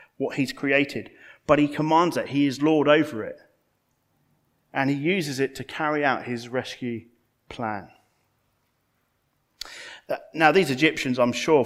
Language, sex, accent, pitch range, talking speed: English, male, British, 110-150 Hz, 145 wpm